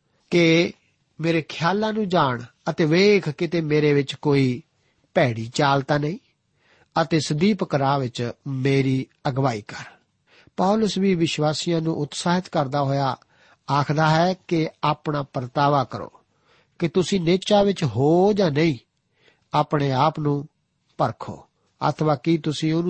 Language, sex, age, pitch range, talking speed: Punjabi, male, 50-69, 140-170 Hz, 100 wpm